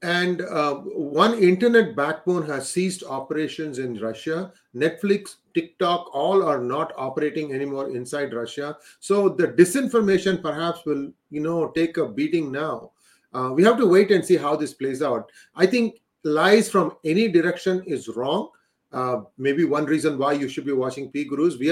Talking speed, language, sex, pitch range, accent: 170 wpm, English, male, 145-195 Hz, Indian